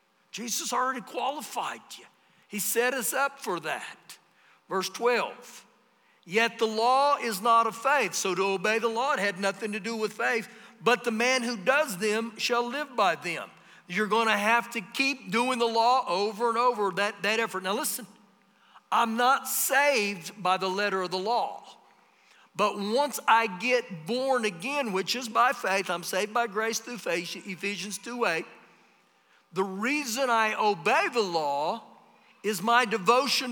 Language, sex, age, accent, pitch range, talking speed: English, male, 50-69, American, 190-240 Hz, 170 wpm